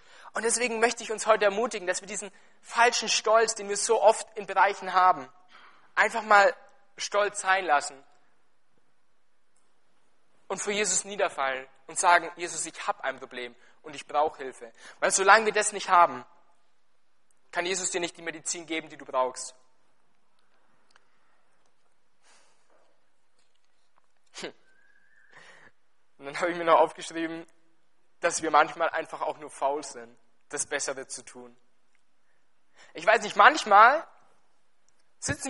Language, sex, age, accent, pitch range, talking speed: German, male, 20-39, German, 160-205 Hz, 135 wpm